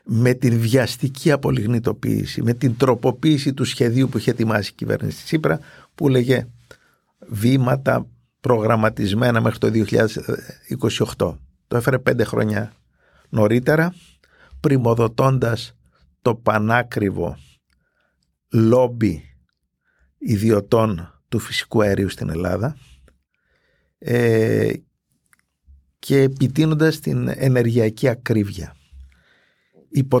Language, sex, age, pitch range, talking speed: Greek, male, 50-69, 105-135 Hz, 90 wpm